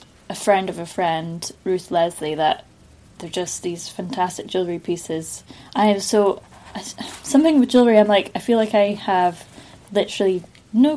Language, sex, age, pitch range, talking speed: English, female, 10-29, 165-195 Hz, 160 wpm